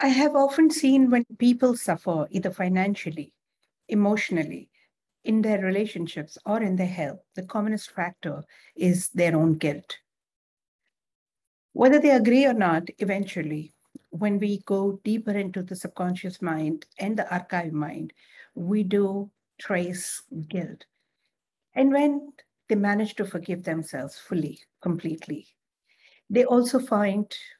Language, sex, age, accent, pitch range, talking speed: English, female, 60-79, Indian, 170-215 Hz, 125 wpm